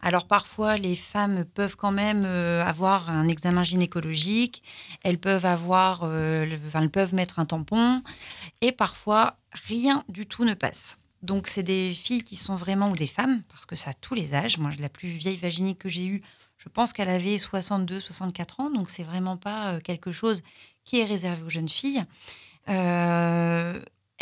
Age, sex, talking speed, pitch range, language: 30-49, female, 185 wpm, 175-210 Hz, French